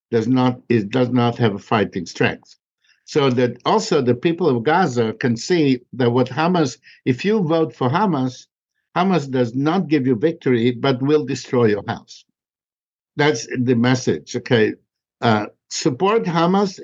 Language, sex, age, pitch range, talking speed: Hebrew, male, 60-79, 120-155 Hz, 155 wpm